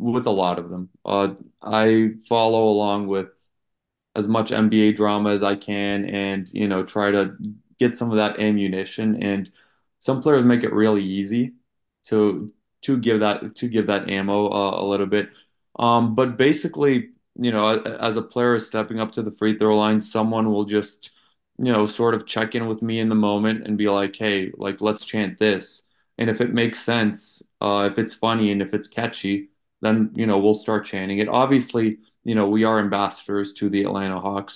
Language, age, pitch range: English, 20-39, 100-115 Hz